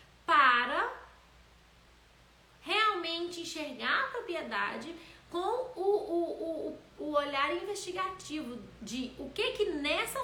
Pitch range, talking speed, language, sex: 260-385 Hz, 90 wpm, Portuguese, female